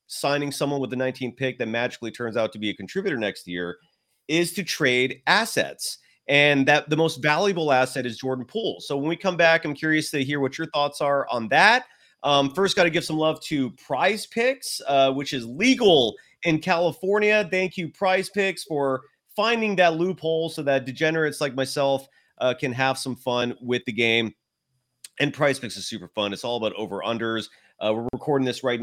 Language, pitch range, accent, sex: English, 125-170 Hz, American, male